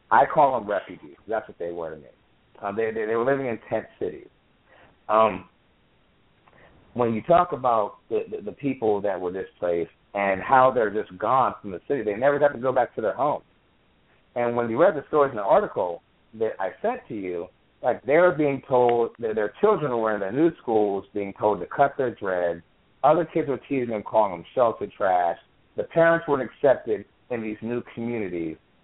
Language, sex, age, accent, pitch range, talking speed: English, male, 50-69, American, 105-140 Hz, 205 wpm